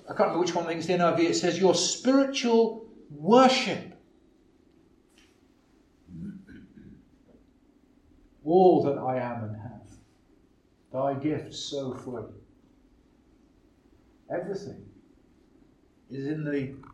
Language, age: English, 50-69